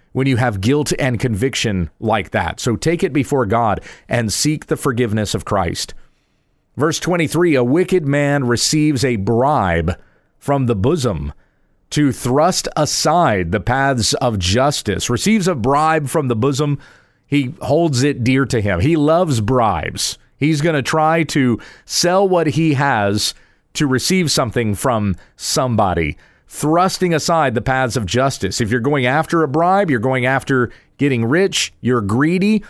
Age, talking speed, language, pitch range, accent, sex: 40-59, 155 wpm, English, 120-160 Hz, American, male